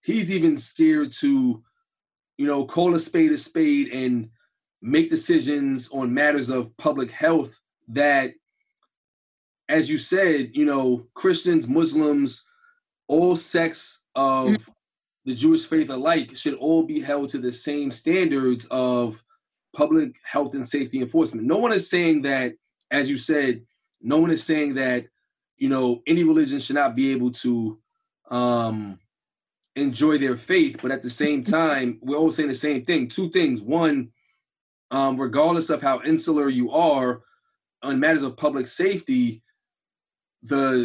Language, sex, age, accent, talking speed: English, male, 20-39, American, 150 wpm